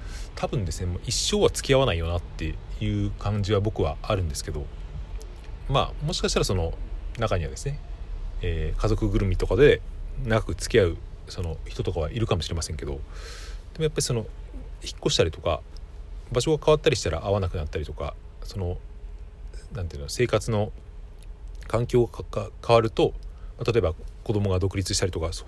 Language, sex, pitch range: Japanese, male, 80-110 Hz